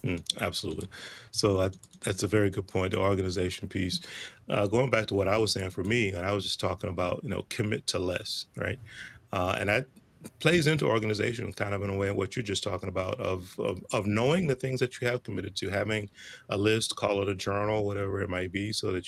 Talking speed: 235 wpm